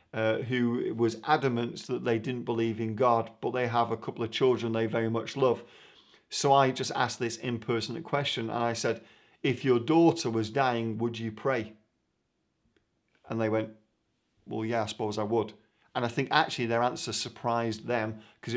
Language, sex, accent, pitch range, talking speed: English, male, British, 115-135 Hz, 185 wpm